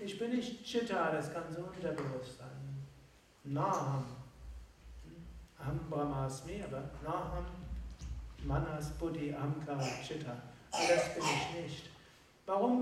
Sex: male